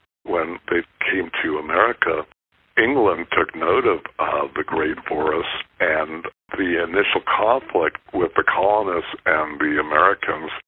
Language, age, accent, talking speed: English, 60-79, American, 130 wpm